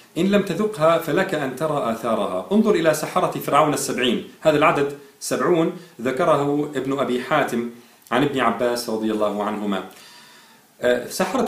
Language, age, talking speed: Arabic, 40-59, 135 wpm